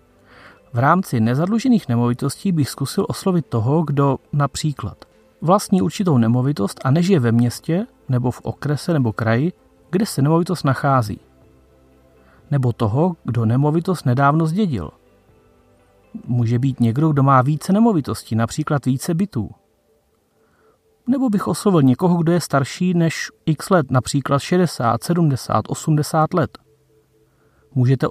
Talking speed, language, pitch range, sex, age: 125 wpm, Czech, 120-175 Hz, male, 30-49